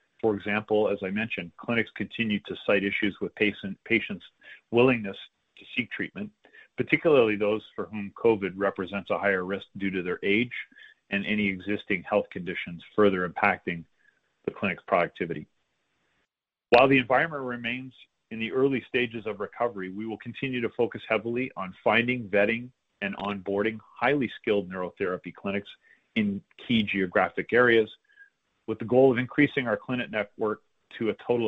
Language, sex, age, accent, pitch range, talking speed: English, male, 40-59, American, 100-120 Hz, 150 wpm